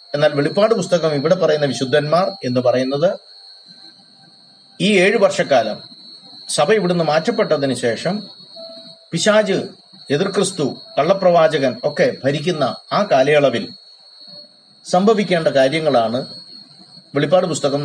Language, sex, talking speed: Malayalam, male, 85 wpm